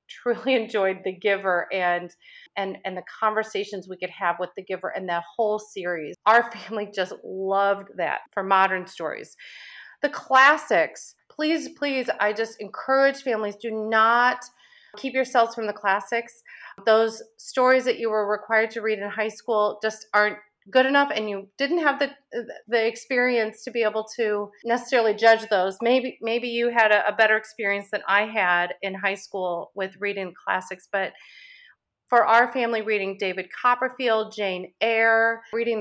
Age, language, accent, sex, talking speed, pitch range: 30-49, English, American, female, 165 wpm, 195-235 Hz